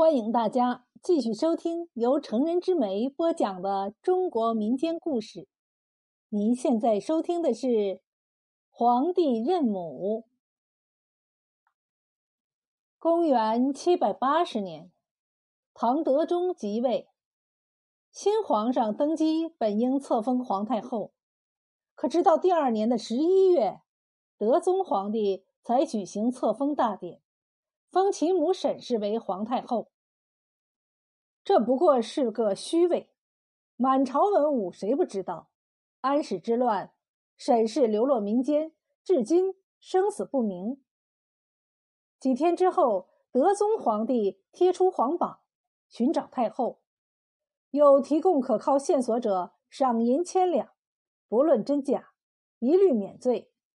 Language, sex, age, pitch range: Chinese, female, 50-69, 220-320 Hz